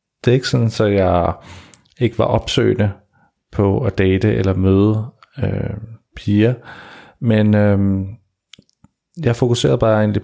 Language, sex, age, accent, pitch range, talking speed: Danish, male, 40-59, native, 95-120 Hz, 130 wpm